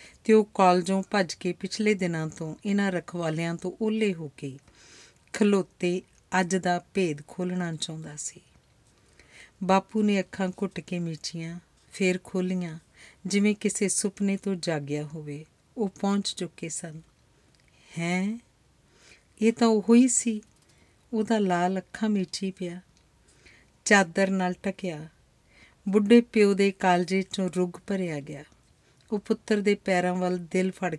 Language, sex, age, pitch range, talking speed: Punjabi, female, 50-69, 165-200 Hz, 110 wpm